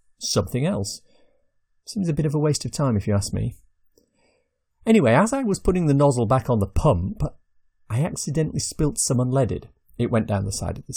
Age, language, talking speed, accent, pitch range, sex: 40-59, English, 200 wpm, British, 105-150 Hz, male